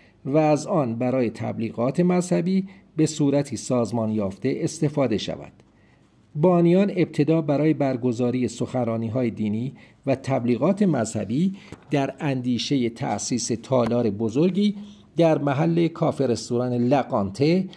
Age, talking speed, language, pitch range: 50-69, 105 wpm, Persian, 120-160 Hz